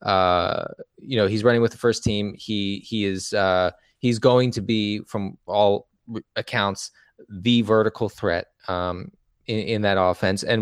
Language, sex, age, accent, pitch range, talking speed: English, male, 20-39, American, 100-120 Hz, 170 wpm